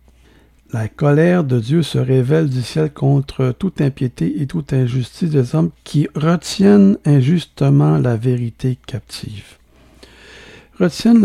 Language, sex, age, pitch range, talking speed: French, male, 60-79, 130-175 Hz, 125 wpm